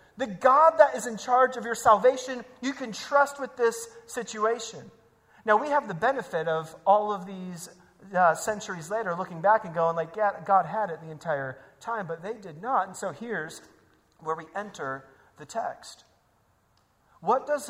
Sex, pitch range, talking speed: male, 180-225 Hz, 175 wpm